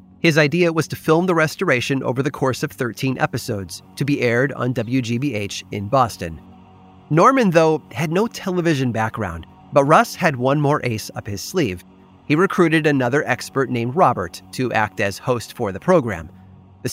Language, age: English, 30-49